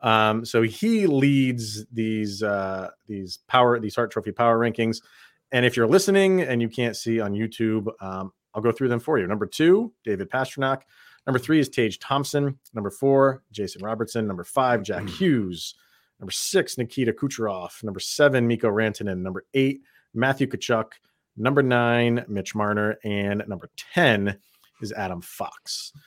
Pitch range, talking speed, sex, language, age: 105-135 Hz, 160 wpm, male, English, 30-49